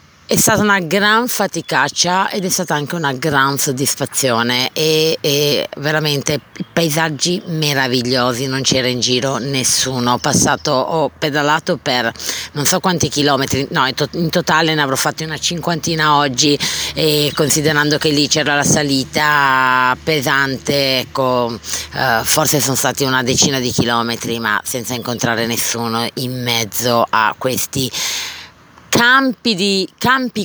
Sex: female